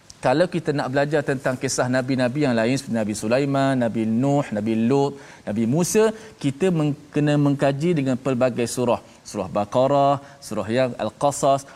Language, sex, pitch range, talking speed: Malayalam, male, 115-150 Hz, 155 wpm